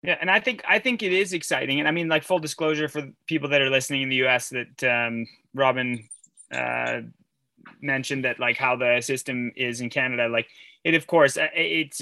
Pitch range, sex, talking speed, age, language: 120-150 Hz, male, 205 wpm, 20-39, English